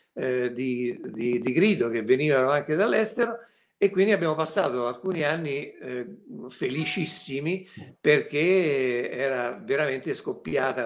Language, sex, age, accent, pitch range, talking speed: Italian, male, 60-79, native, 120-190 Hz, 110 wpm